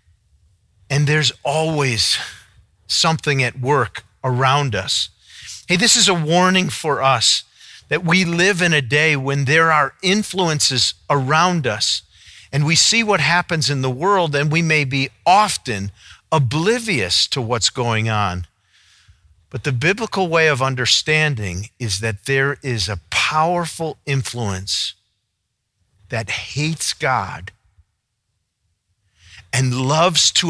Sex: male